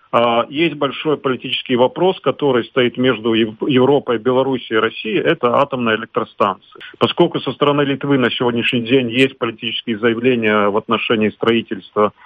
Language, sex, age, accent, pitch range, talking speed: Russian, male, 40-59, native, 115-140 Hz, 130 wpm